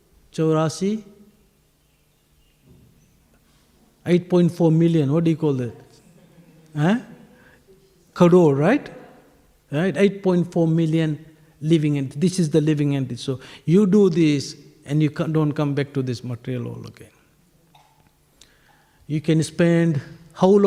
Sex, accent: male, Indian